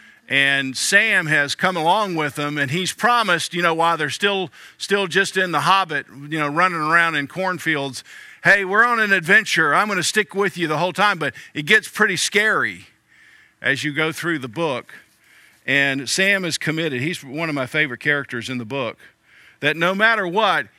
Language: English